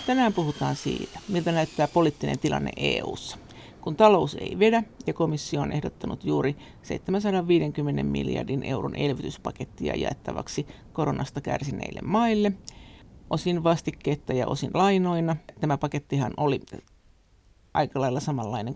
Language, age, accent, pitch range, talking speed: Finnish, 50-69, native, 140-180 Hz, 115 wpm